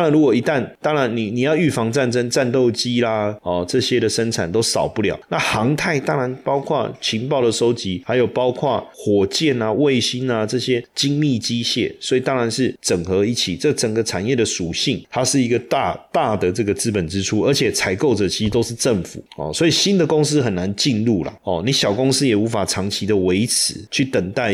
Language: Chinese